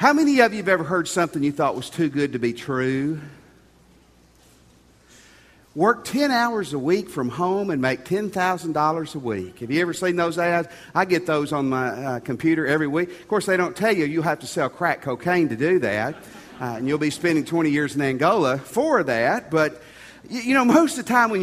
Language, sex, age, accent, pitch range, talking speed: English, male, 40-59, American, 130-185 Hz, 215 wpm